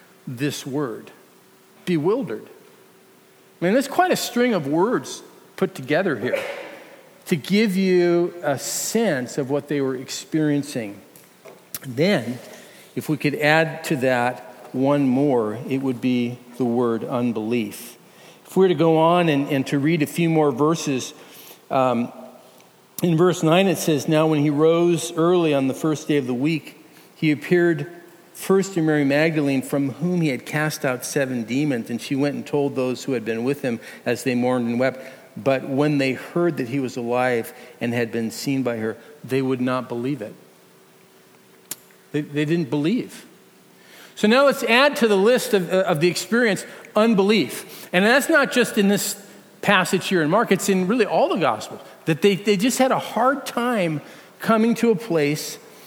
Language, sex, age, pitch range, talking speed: English, male, 50-69, 130-185 Hz, 175 wpm